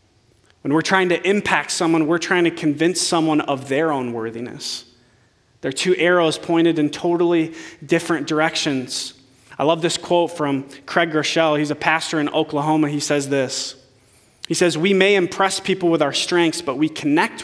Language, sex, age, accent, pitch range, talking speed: English, male, 20-39, American, 125-170 Hz, 170 wpm